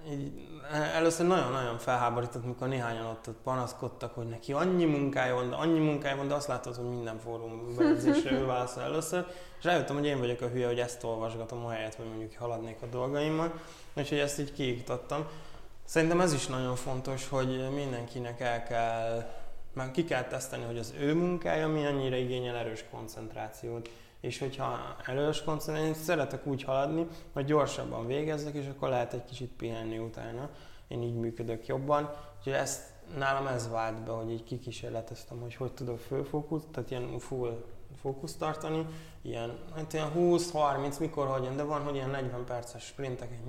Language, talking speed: Hungarian, 170 wpm